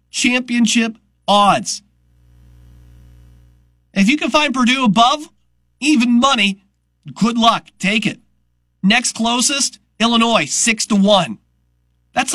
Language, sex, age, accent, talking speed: English, male, 40-59, American, 100 wpm